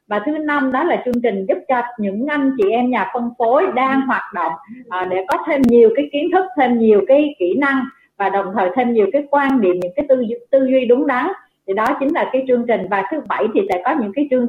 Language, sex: Vietnamese, female